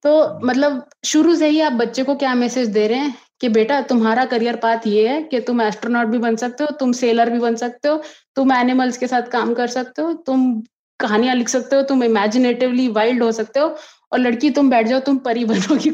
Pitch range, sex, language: 210-265 Hz, female, Hindi